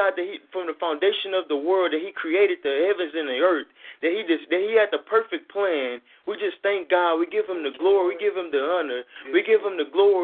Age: 20-39